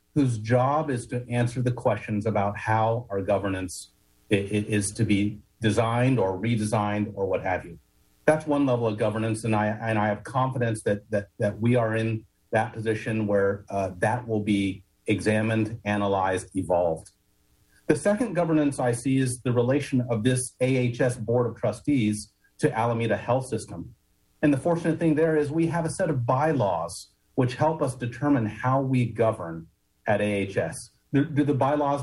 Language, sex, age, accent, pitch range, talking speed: English, male, 40-59, American, 105-135 Hz, 170 wpm